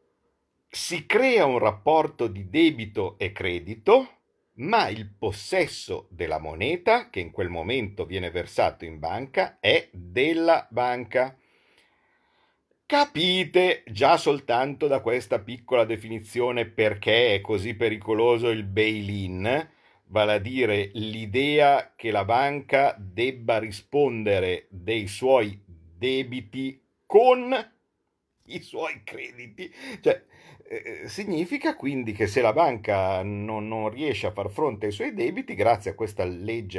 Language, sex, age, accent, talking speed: Italian, male, 50-69, native, 120 wpm